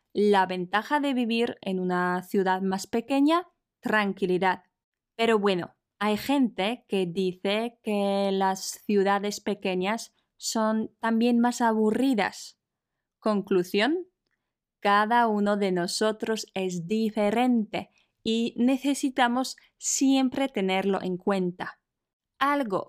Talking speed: 100 wpm